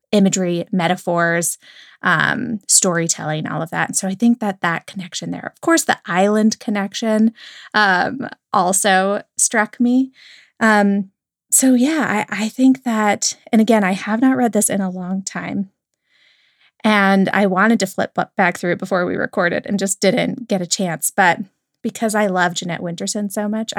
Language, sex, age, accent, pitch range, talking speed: English, female, 20-39, American, 185-235 Hz, 170 wpm